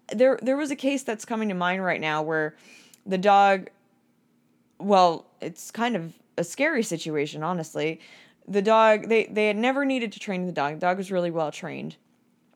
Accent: American